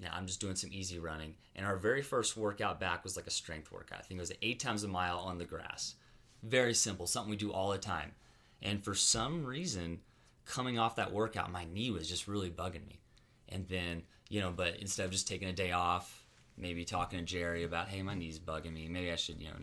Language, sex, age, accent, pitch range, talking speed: English, male, 30-49, American, 90-110 Hz, 240 wpm